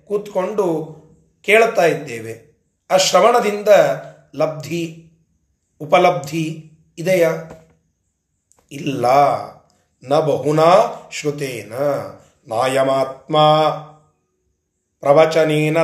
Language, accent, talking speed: Kannada, native, 55 wpm